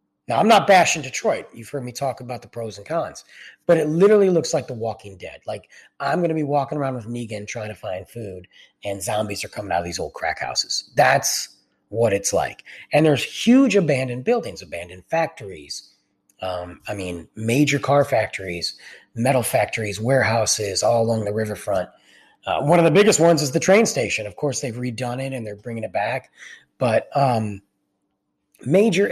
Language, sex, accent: English, male, American